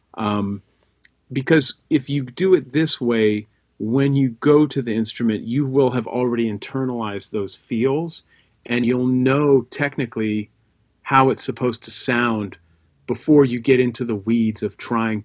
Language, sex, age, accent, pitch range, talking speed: English, male, 40-59, American, 105-135 Hz, 150 wpm